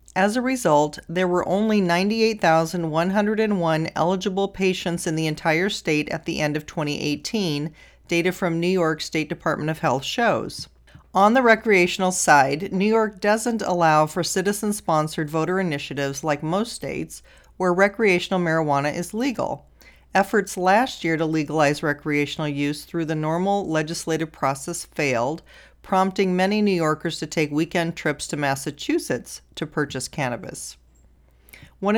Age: 40-59